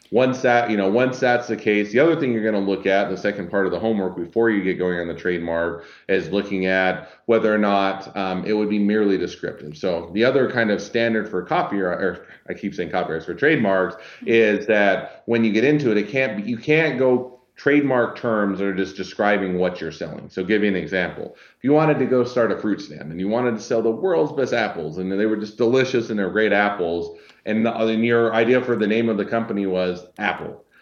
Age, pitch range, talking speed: 30-49, 95-115 Hz, 240 wpm